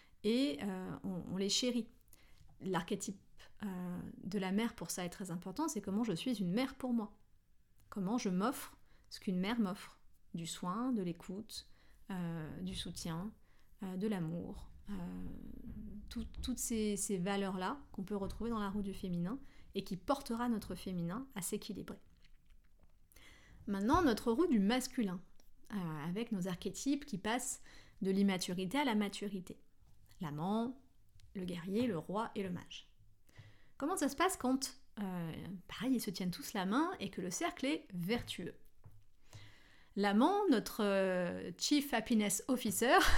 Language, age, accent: French, 30-49, French